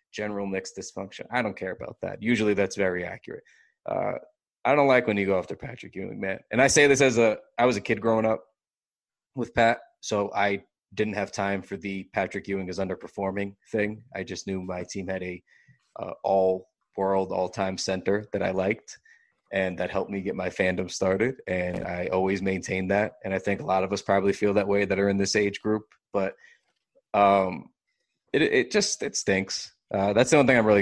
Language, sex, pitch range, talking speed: English, male, 95-110 Hz, 210 wpm